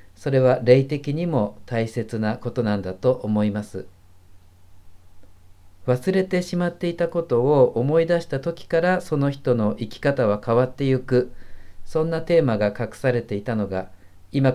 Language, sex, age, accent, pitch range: Japanese, male, 40-59, native, 100-130 Hz